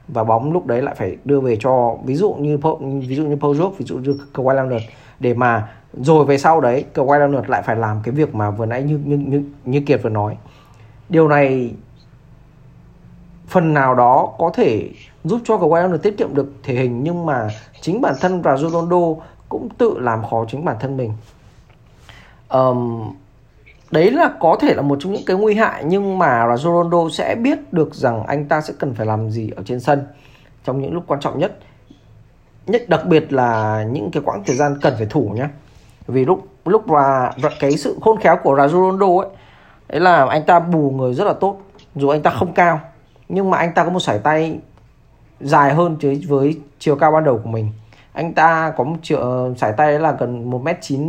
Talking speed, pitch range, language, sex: 210 wpm, 125-160 Hz, Vietnamese, male